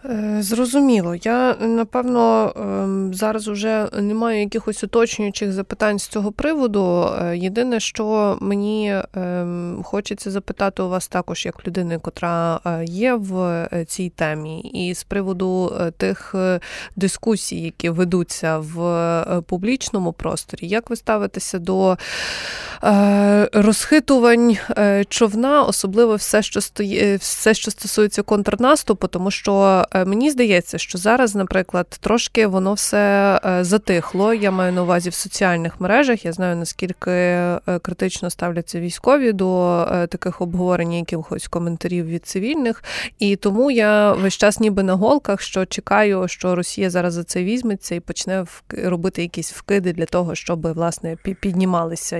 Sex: female